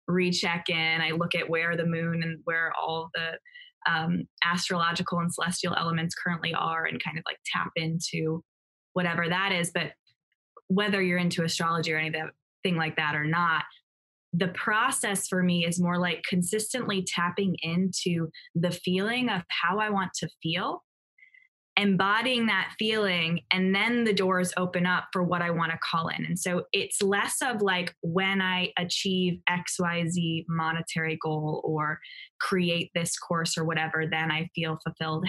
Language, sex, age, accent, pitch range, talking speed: English, female, 20-39, American, 165-185 Hz, 165 wpm